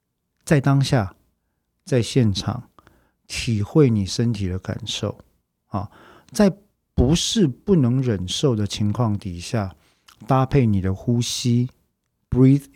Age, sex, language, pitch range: 50-69, male, Chinese, 95-130 Hz